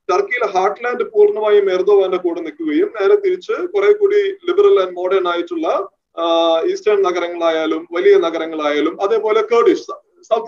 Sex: male